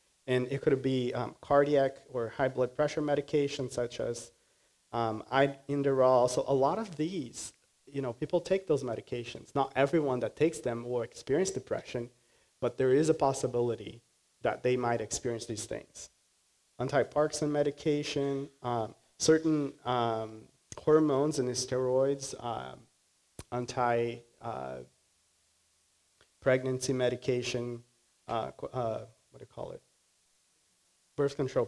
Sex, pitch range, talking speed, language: male, 120-140 Hz, 125 wpm, English